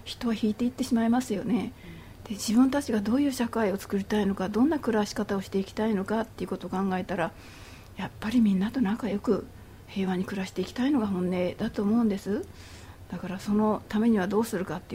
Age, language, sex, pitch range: 40-59, Japanese, female, 175-220 Hz